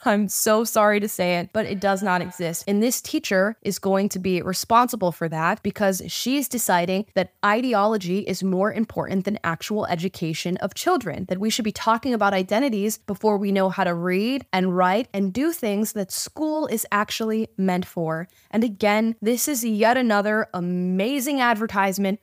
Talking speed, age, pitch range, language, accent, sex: 180 wpm, 20-39, 185-225 Hz, English, American, female